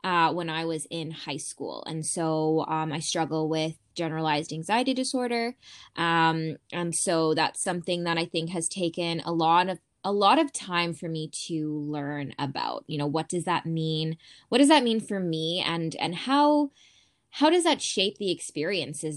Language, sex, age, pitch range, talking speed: English, female, 10-29, 155-175 Hz, 185 wpm